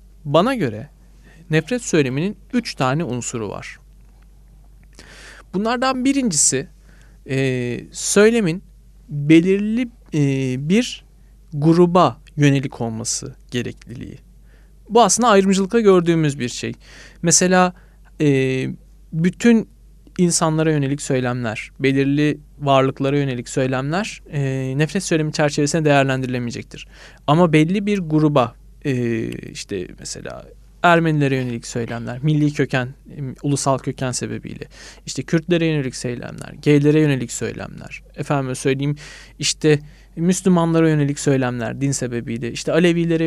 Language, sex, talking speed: Turkish, male, 100 wpm